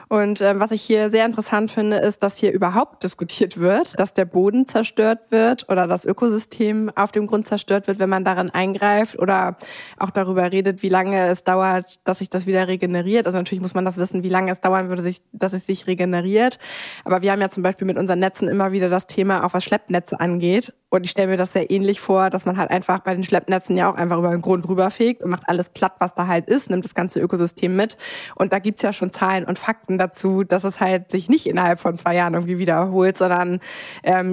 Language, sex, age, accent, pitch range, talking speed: German, female, 20-39, German, 175-200 Hz, 240 wpm